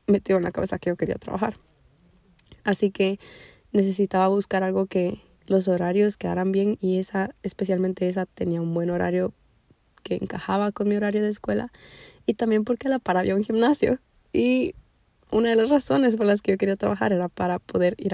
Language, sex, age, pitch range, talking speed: Spanish, female, 20-39, 180-210 Hz, 185 wpm